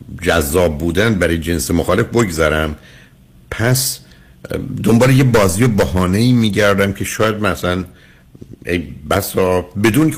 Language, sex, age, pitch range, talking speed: Persian, male, 60-79, 75-115 Hz, 120 wpm